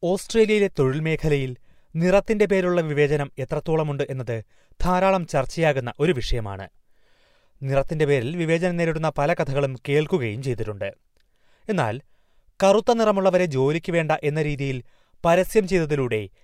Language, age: Malayalam, 30-49